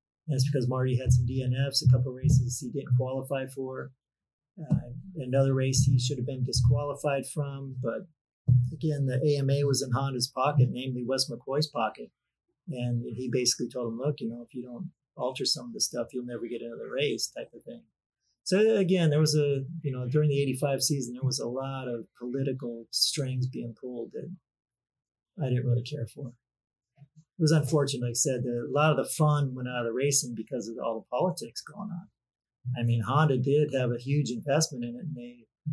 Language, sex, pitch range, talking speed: English, male, 120-150 Hz, 205 wpm